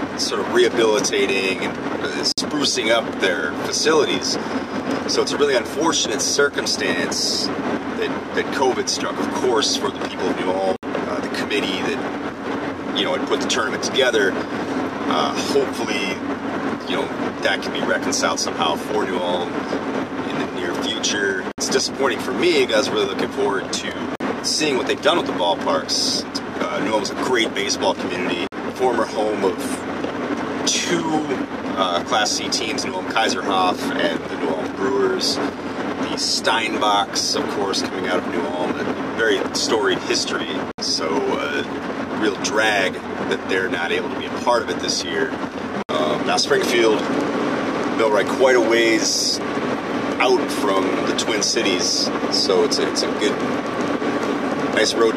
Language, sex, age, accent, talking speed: English, male, 30-49, American, 155 wpm